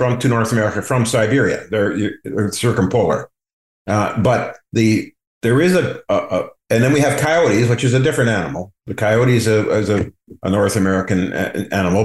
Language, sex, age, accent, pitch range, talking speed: English, male, 50-69, American, 105-130 Hz, 180 wpm